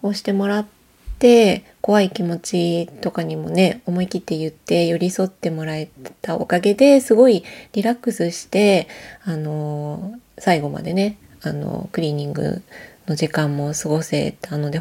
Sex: female